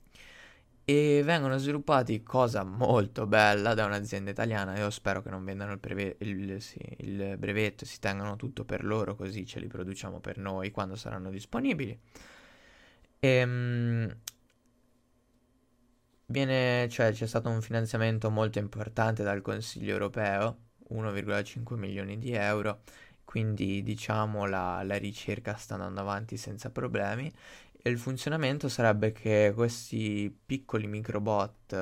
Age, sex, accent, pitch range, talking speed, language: 20-39, male, native, 100-120 Hz, 125 wpm, Italian